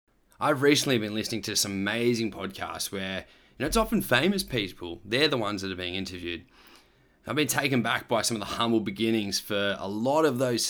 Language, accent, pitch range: English, Australian, 105-145 Hz